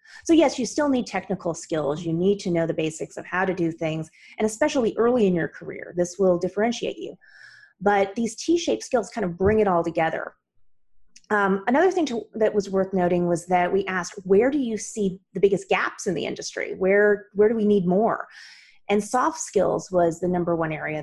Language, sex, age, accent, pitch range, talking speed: English, female, 30-49, American, 180-235 Hz, 210 wpm